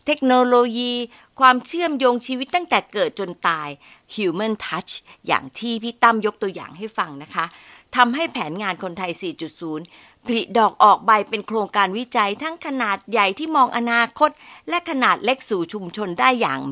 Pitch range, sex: 180-255 Hz, female